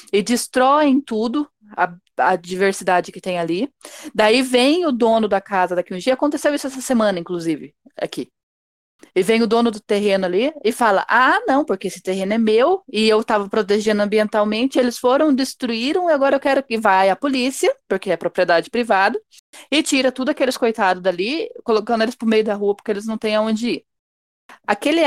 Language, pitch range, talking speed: Portuguese, 195-255 Hz, 190 wpm